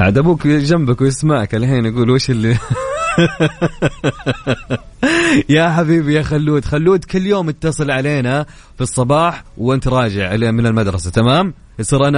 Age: 30-49